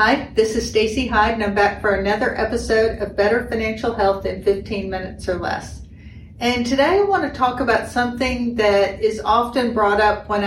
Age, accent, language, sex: 50-69, American, English, female